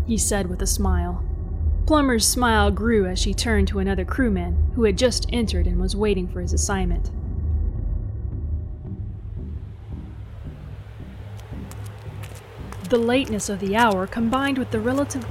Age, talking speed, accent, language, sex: 30-49, 130 wpm, American, English, female